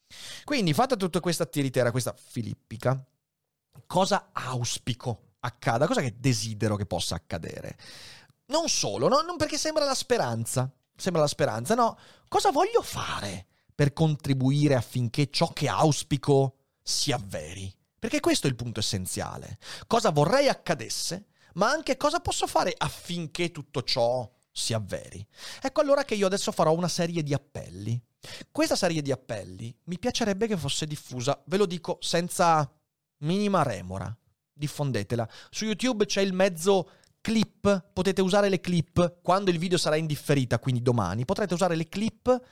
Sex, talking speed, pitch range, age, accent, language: male, 145 wpm, 125-190 Hz, 30-49, native, Italian